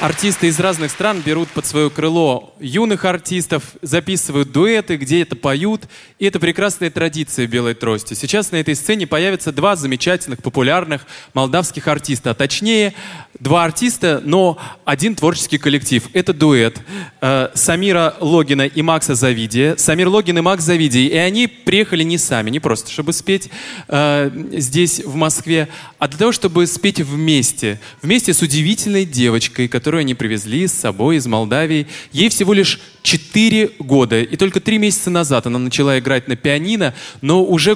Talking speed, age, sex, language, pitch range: 155 wpm, 20-39, male, Russian, 140-180 Hz